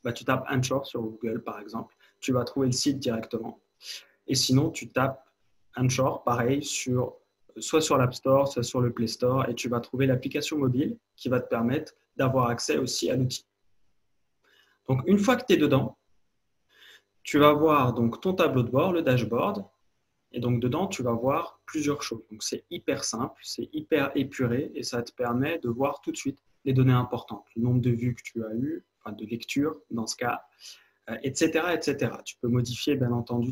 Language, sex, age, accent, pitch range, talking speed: French, male, 20-39, French, 120-140 Hz, 195 wpm